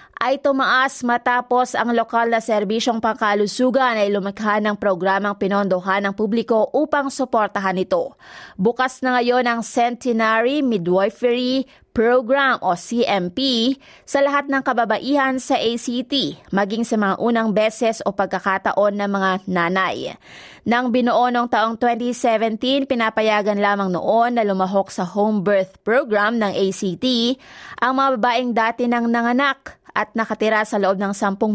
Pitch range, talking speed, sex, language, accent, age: 200-240 Hz, 135 wpm, female, Filipino, native, 20-39